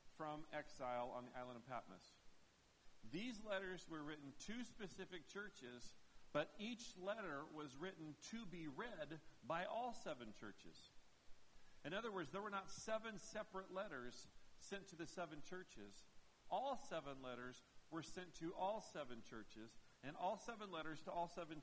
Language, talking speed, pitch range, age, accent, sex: English, 155 wpm, 135-185 Hz, 50-69, American, male